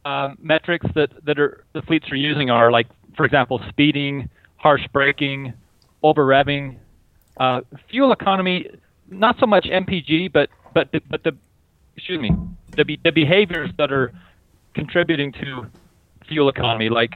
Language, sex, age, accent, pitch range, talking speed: English, male, 30-49, American, 115-160 Hz, 150 wpm